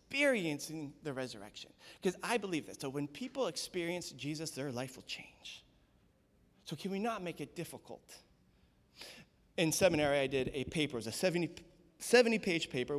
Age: 20-39